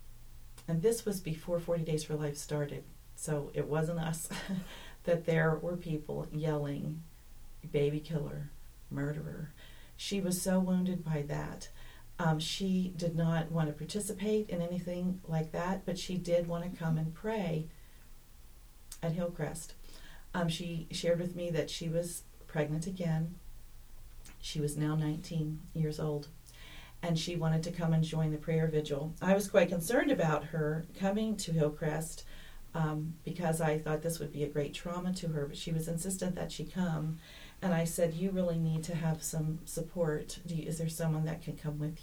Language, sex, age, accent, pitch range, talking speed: English, female, 40-59, American, 150-175 Hz, 170 wpm